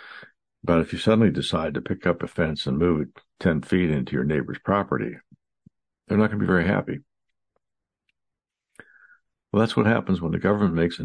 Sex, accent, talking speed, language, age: male, American, 190 wpm, English, 60-79